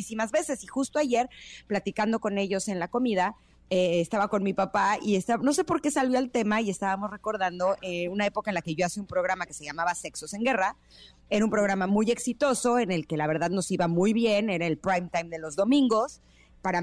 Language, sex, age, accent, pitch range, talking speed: Spanish, female, 30-49, Mexican, 190-250 Hz, 230 wpm